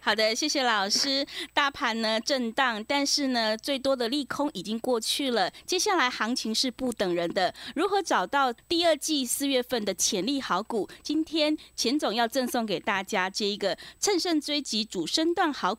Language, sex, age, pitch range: Chinese, female, 20-39, 215-300 Hz